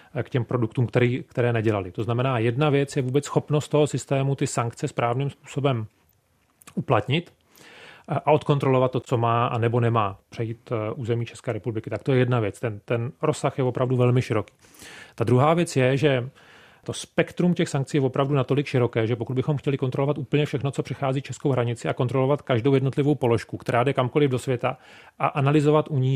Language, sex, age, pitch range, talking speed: Czech, male, 40-59, 120-145 Hz, 190 wpm